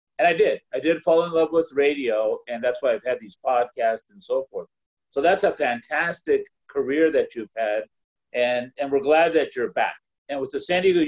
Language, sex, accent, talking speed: English, male, American, 215 wpm